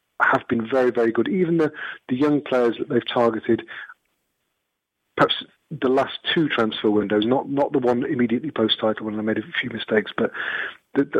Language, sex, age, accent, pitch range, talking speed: English, male, 40-59, British, 110-135 Hz, 180 wpm